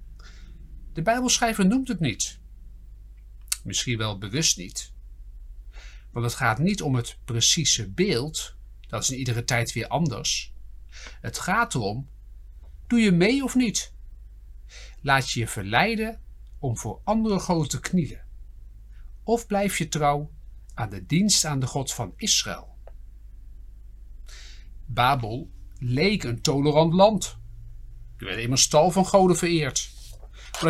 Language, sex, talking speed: Dutch, male, 130 wpm